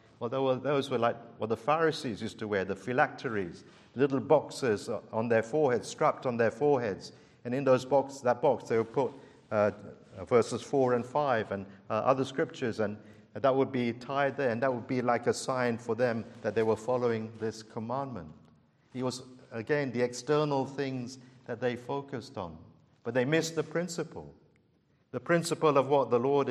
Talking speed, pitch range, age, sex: 185 wpm, 120-145 Hz, 50-69, male